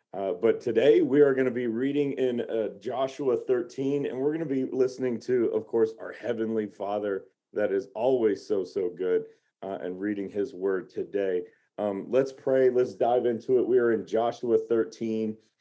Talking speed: 190 wpm